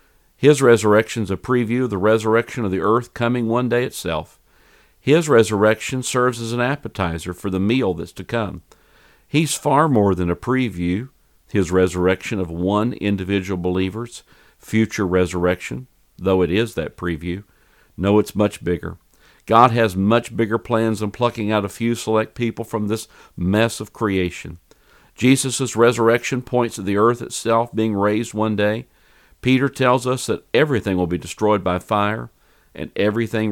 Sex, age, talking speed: male, 50-69, 160 wpm